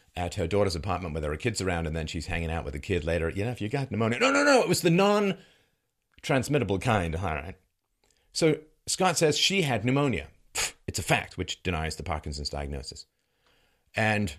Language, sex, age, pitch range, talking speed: English, male, 40-59, 80-125 Hz, 210 wpm